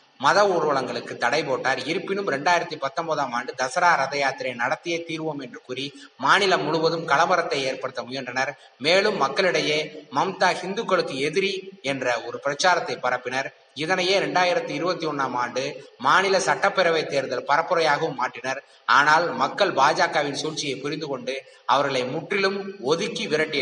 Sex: male